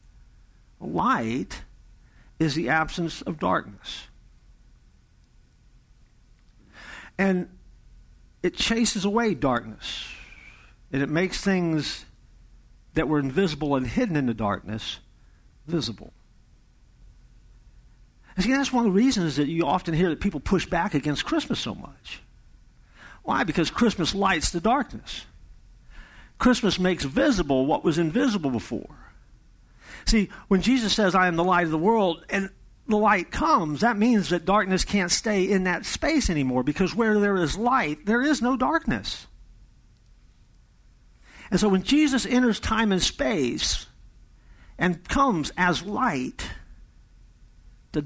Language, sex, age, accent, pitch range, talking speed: English, male, 60-79, American, 150-215 Hz, 125 wpm